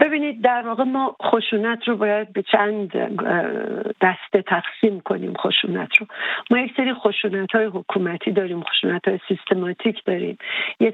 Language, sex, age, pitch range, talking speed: English, female, 50-69, 190-225 Hz, 145 wpm